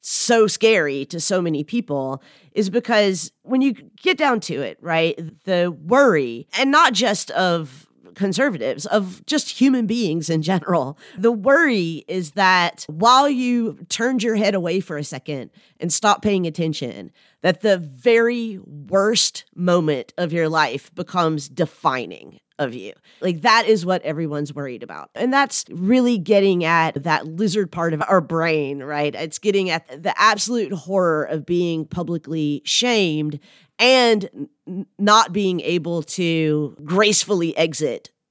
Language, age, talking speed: English, 30-49, 145 wpm